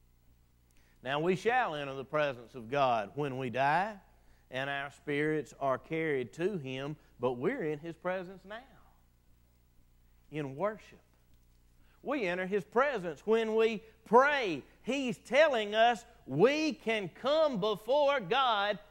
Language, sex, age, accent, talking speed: English, male, 40-59, American, 130 wpm